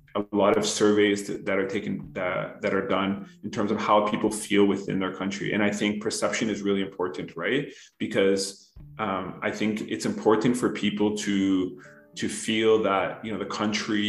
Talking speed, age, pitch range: 185 wpm, 20-39, 95-105 Hz